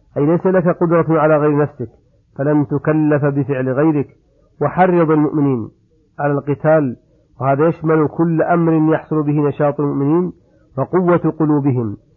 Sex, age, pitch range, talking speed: male, 50-69, 140-160 Hz, 125 wpm